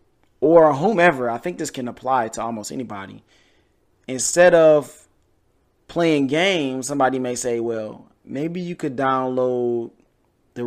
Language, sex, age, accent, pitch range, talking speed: English, male, 20-39, American, 120-160 Hz, 130 wpm